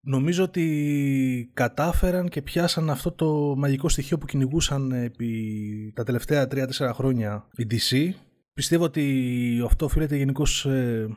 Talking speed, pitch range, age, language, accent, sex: 125 wpm, 115-145 Hz, 20-39, Greek, native, male